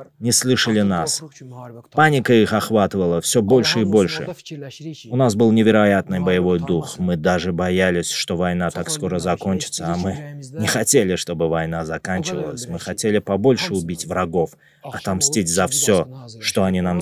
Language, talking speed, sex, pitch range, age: Russian, 150 wpm, male, 95-120 Hz, 20-39